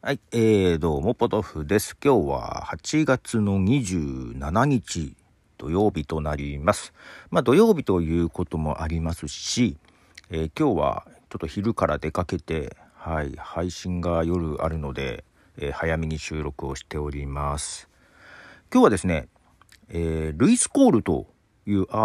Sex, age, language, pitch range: male, 40-59, Japanese, 80-110 Hz